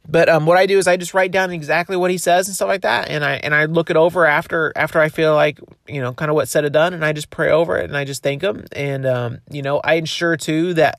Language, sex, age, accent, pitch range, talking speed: English, male, 30-49, American, 135-170 Hz, 310 wpm